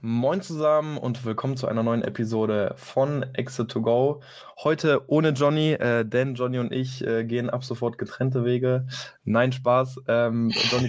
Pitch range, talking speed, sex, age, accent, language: 120-140 Hz, 150 wpm, male, 20-39, German, German